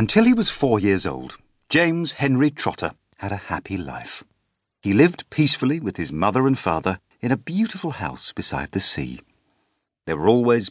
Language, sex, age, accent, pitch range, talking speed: English, male, 40-59, British, 85-130 Hz, 175 wpm